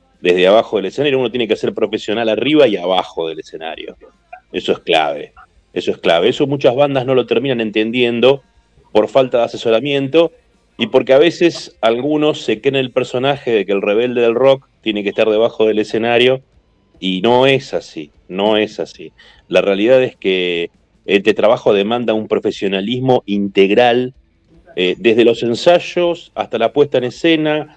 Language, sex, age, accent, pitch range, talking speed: Spanish, male, 40-59, Argentinian, 110-145 Hz, 170 wpm